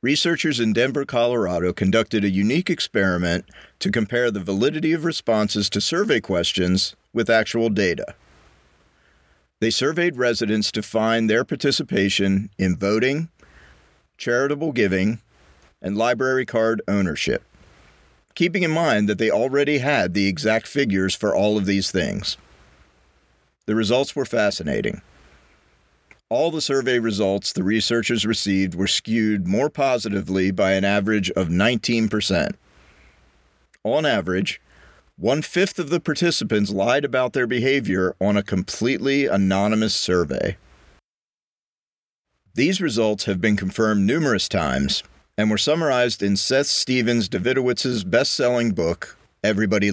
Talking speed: 125 wpm